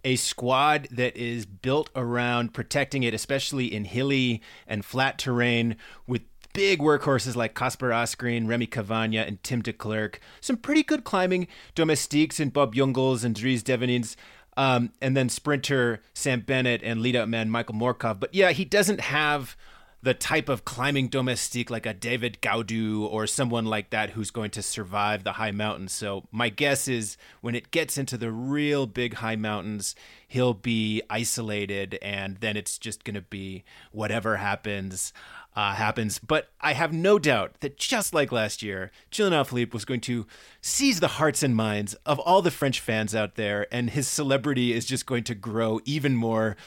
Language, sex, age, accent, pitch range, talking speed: English, male, 30-49, American, 110-140 Hz, 175 wpm